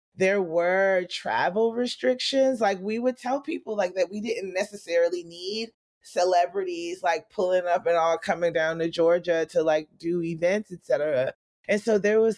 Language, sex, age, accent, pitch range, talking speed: English, female, 30-49, American, 170-220 Hz, 170 wpm